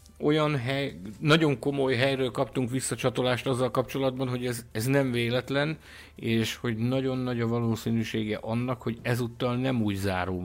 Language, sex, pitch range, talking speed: Hungarian, male, 95-130 Hz, 150 wpm